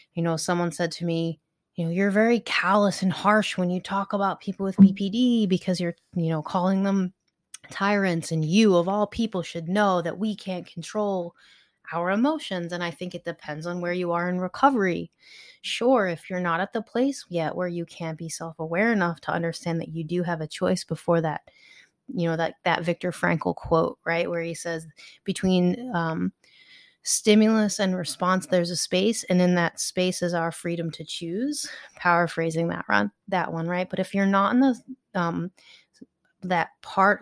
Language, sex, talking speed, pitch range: English, female, 190 wpm, 170-205 Hz